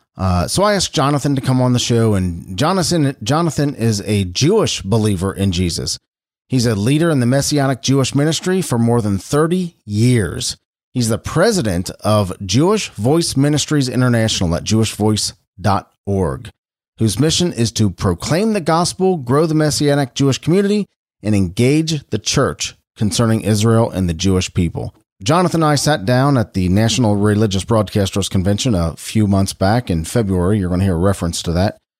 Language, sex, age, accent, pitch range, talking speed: English, male, 40-59, American, 100-145 Hz, 165 wpm